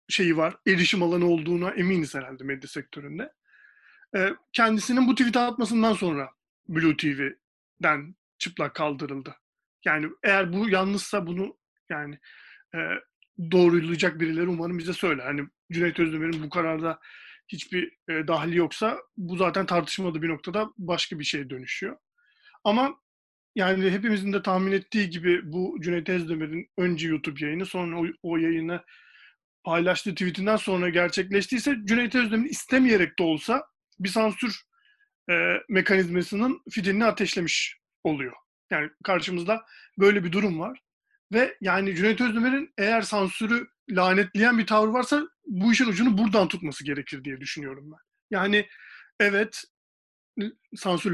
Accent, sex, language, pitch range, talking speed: native, male, Turkish, 170-220 Hz, 125 wpm